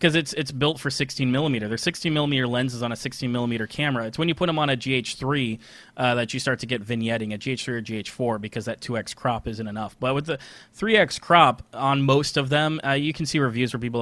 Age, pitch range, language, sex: 30-49, 125-155 Hz, English, male